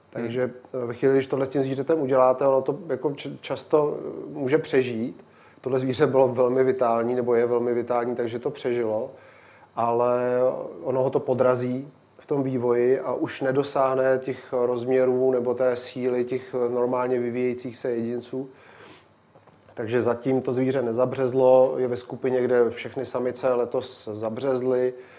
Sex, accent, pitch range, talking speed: male, native, 120-130 Hz, 145 wpm